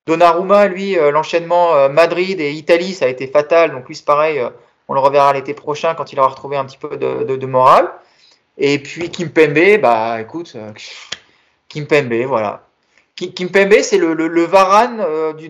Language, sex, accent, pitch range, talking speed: French, male, French, 135-175 Hz, 180 wpm